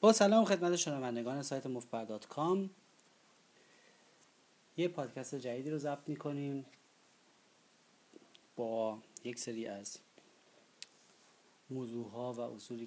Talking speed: 100 wpm